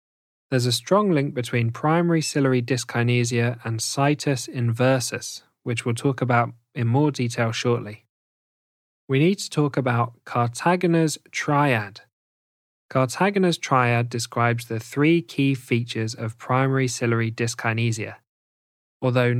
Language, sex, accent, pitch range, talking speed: English, male, British, 115-140 Hz, 120 wpm